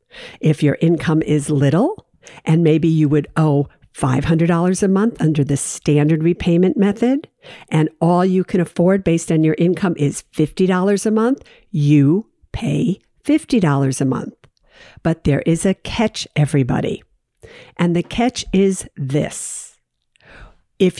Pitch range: 155-205 Hz